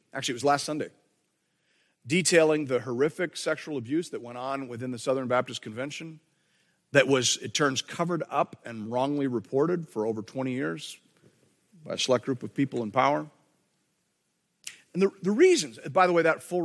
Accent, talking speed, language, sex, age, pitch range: American, 175 wpm, English, male, 50-69, 130-170 Hz